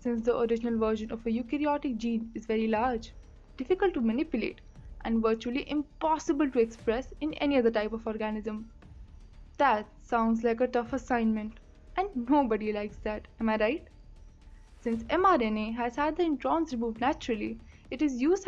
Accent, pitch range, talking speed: Indian, 225-295 Hz, 160 wpm